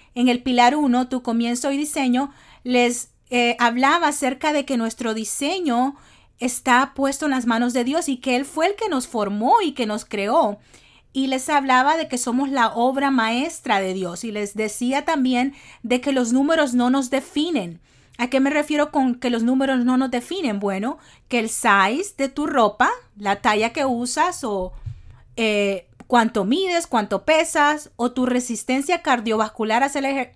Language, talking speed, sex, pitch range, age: English, 180 wpm, female, 225-280 Hz, 40-59